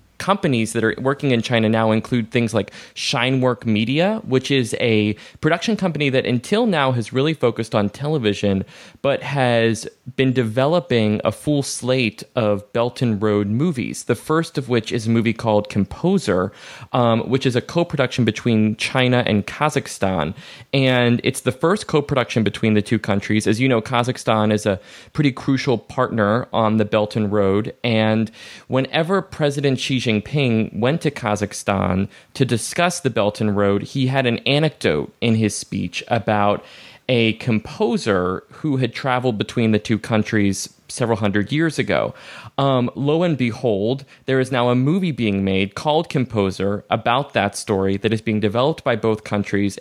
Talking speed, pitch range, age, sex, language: 165 wpm, 105-135 Hz, 20-39, male, English